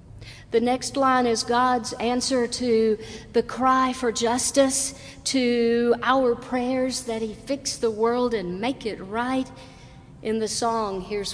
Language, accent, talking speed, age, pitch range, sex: English, American, 145 wpm, 50-69, 185-260 Hz, female